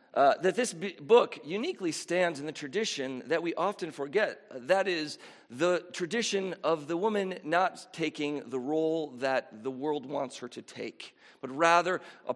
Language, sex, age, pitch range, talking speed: English, male, 40-59, 150-220 Hz, 170 wpm